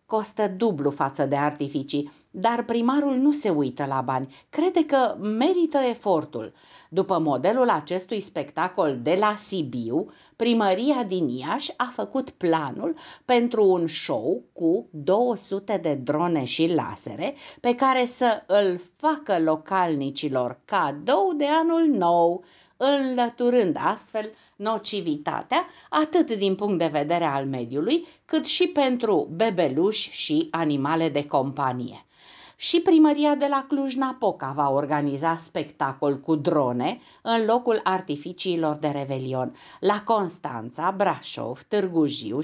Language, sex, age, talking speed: Romanian, female, 50-69, 120 wpm